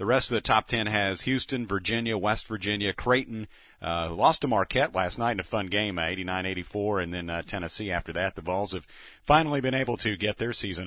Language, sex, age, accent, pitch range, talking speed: English, male, 40-59, American, 95-115 Hz, 215 wpm